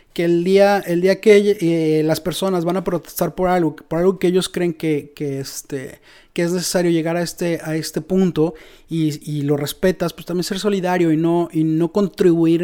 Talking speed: 210 wpm